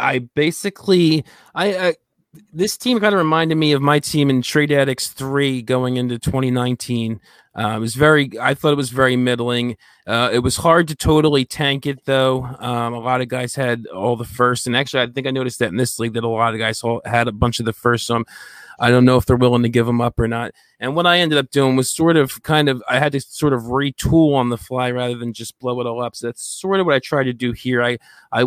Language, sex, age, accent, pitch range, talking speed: English, male, 20-39, American, 120-140 Hz, 255 wpm